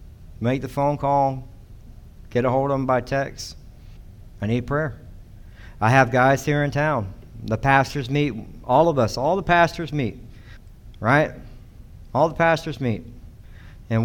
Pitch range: 115-180 Hz